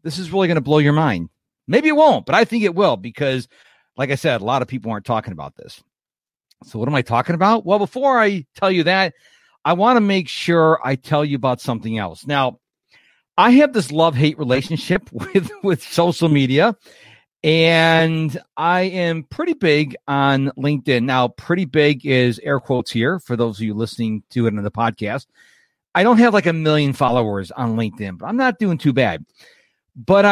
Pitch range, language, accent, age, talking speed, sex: 125-185 Hz, English, American, 50-69, 200 wpm, male